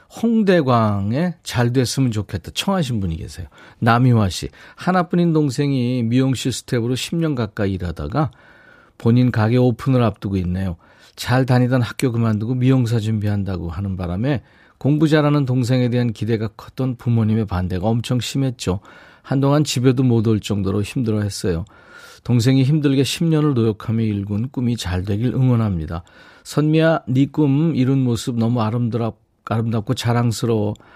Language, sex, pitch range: Korean, male, 105-140 Hz